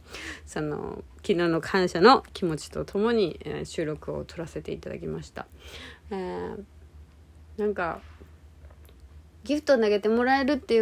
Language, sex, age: Japanese, female, 30-49